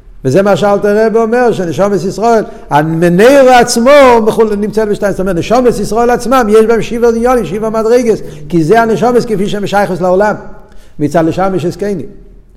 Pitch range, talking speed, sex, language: 135-195 Hz, 155 wpm, male, Hebrew